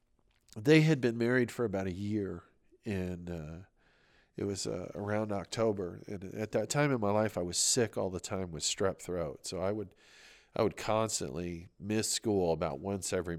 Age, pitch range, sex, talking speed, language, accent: 40-59, 85-105 Hz, male, 190 wpm, English, American